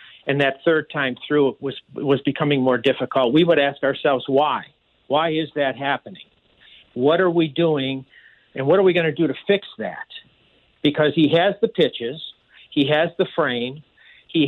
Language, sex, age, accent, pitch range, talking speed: English, male, 50-69, American, 145-180 Hz, 180 wpm